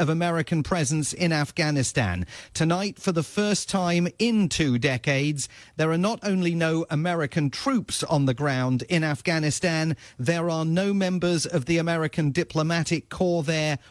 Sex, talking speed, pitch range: male, 150 wpm, 140-175 Hz